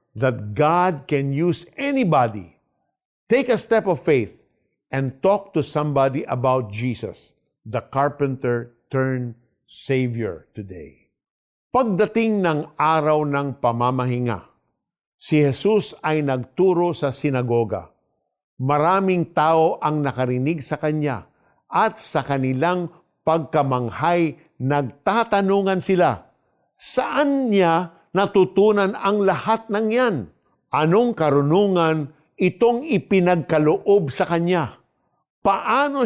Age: 50-69